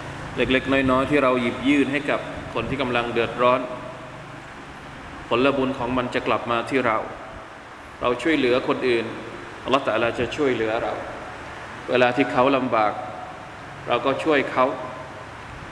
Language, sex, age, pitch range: Thai, male, 20-39, 120-135 Hz